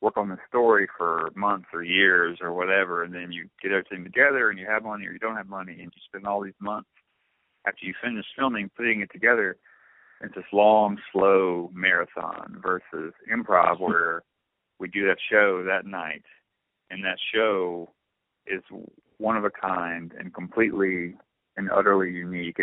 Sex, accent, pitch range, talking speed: male, American, 90-100 Hz, 170 wpm